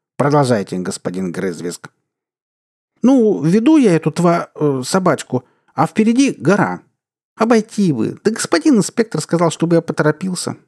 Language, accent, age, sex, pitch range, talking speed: Russian, native, 50-69, male, 125-195 Hz, 120 wpm